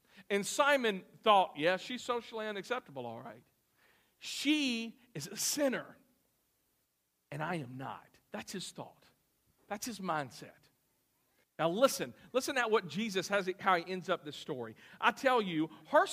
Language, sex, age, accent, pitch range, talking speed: English, male, 50-69, American, 180-260 Hz, 150 wpm